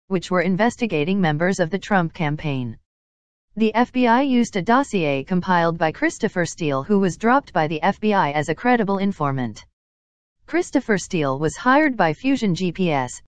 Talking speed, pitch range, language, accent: 155 wpm, 150-220 Hz, English, American